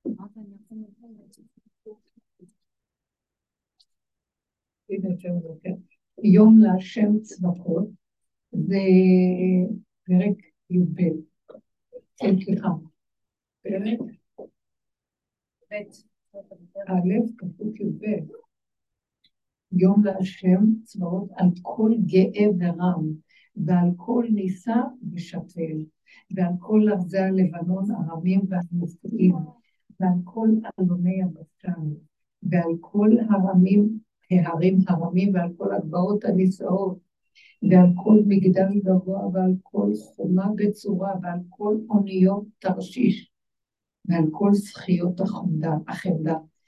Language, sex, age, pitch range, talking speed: Hebrew, female, 60-79, 180-210 Hz, 45 wpm